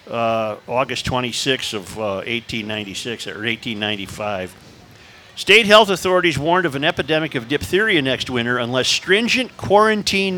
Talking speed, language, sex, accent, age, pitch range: 125 wpm, English, male, American, 50-69, 140-195 Hz